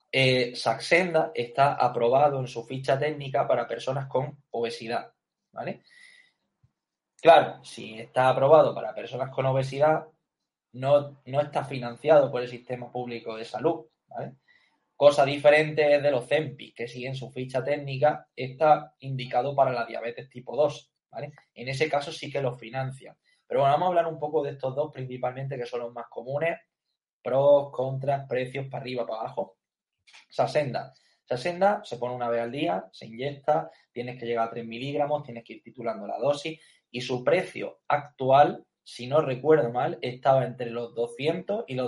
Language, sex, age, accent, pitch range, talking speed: Spanish, male, 20-39, Spanish, 125-150 Hz, 170 wpm